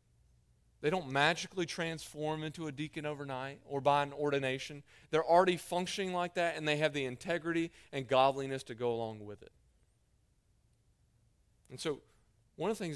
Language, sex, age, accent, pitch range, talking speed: English, male, 40-59, American, 110-170 Hz, 160 wpm